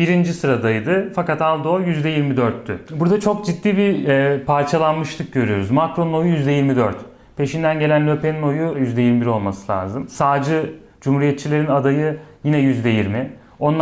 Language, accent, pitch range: Turkish, native, 130-165 Hz